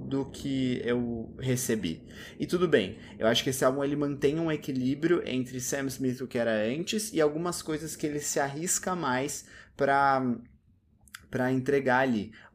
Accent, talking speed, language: Brazilian, 165 wpm, Portuguese